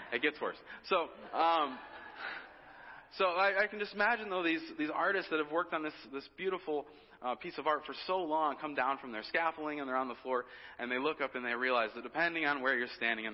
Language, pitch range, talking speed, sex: English, 105-140 Hz, 240 wpm, male